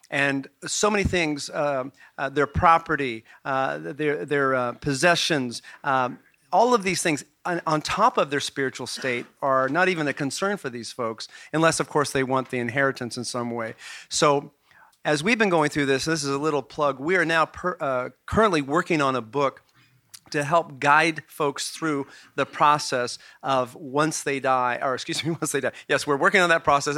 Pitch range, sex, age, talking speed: 135-165 Hz, male, 40-59, 200 wpm